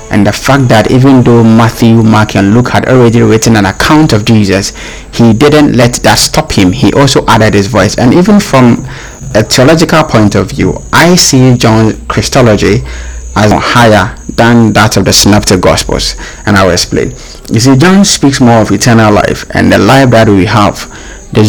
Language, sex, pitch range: English, male, 105-130 Hz